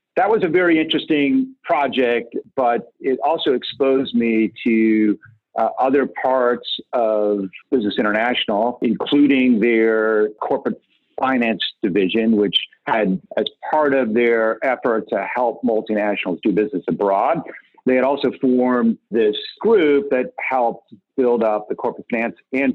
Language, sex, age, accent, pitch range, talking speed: English, male, 50-69, American, 110-130 Hz, 130 wpm